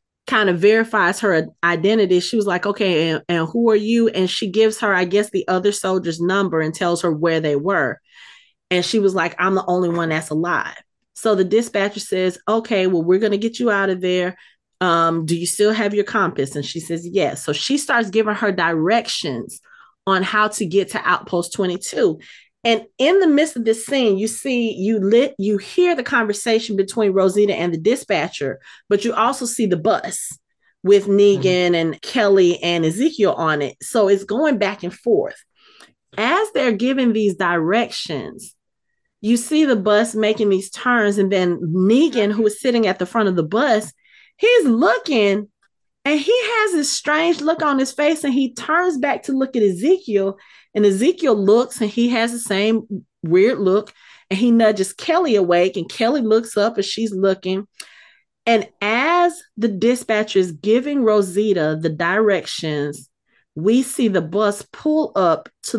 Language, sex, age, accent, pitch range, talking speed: English, female, 30-49, American, 185-235 Hz, 180 wpm